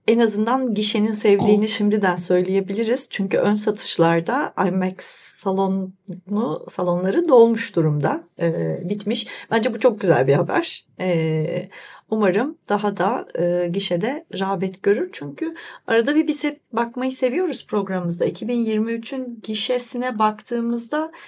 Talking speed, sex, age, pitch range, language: 115 wpm, female, 30-49, 185-235 Hz, Turkish